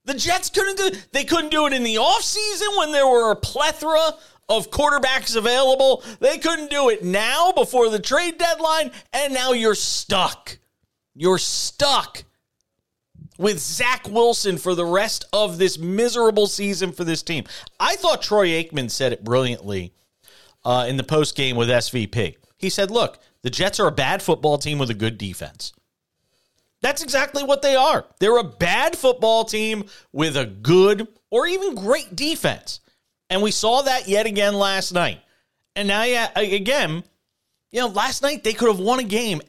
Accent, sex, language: American, male, English